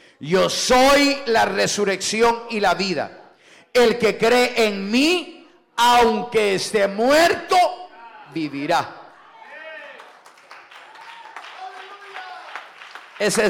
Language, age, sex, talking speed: English, 50-69, male, 75 wpm